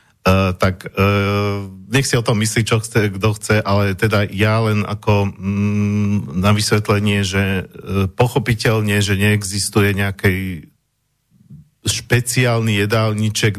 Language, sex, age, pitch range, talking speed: Slovak, male, 50-69, 100-120 Hz, 125 wpm